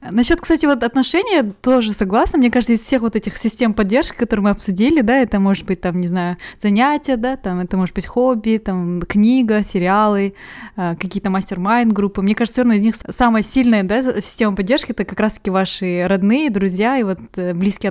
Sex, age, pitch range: female, 20-39, 190-230 Hz